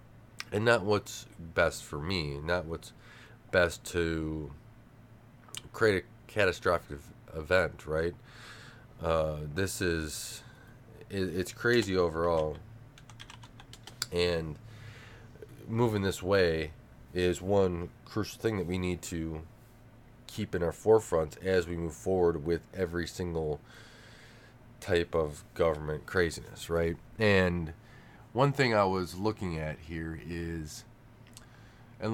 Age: 20-39